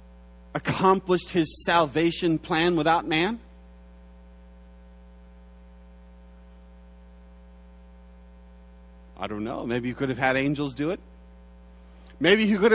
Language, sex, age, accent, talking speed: English, male, 40-59, American, 95 wpm